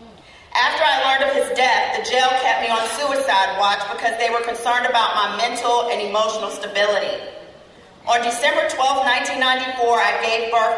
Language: English